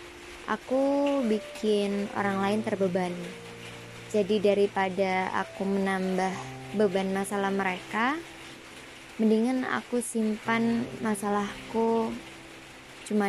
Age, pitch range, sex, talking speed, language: 20-39, 190-225 Hz, male, 75 wpm, Indonesian